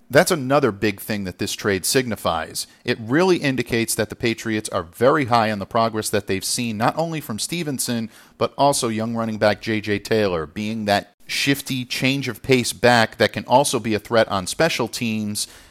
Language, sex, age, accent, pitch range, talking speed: English, male, 50-69, American, 100-125 Hz, 190 wpm